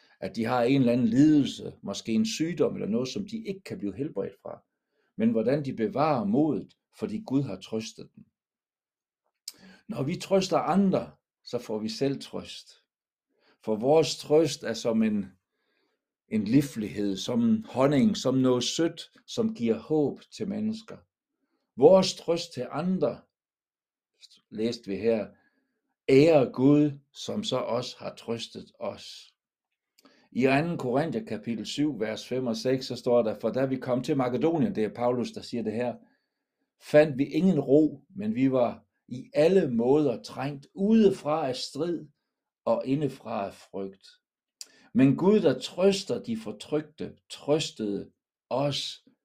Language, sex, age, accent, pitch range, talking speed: Danish, male, 60-79, native, 120-190 Hz, 150 wpm